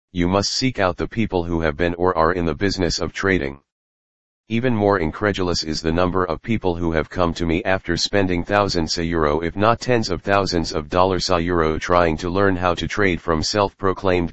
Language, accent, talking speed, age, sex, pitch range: Tamil, American, 215 wpm, 40-59, male, 80-100 Hz